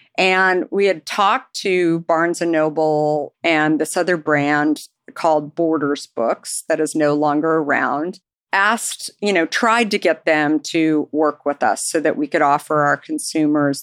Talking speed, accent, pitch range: 160 wpm, American, 155-195 Hz